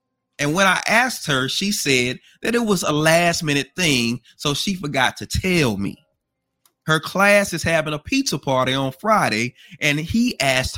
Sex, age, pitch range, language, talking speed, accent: male, 30-49, 130-175 Hz, English, 180 wpm, American